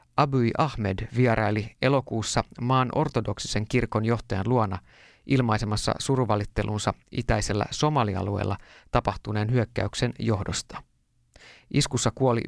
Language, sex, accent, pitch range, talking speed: Finnish, male, native, 100-125 Hz, 85 wpm